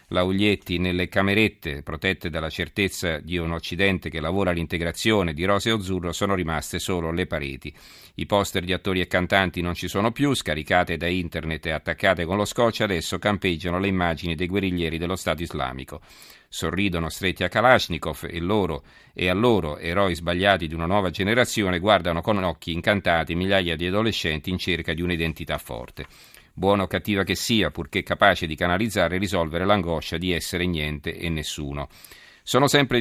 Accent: native